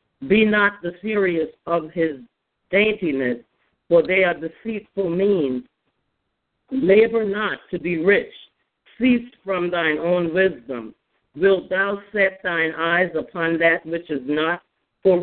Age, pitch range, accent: 50-69, 160-195 Hz, American